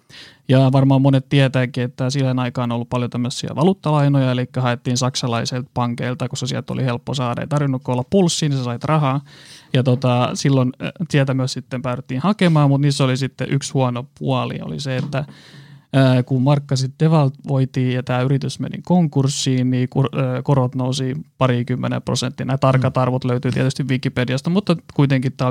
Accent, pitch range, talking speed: native, 125-140 Hz, 160 wpm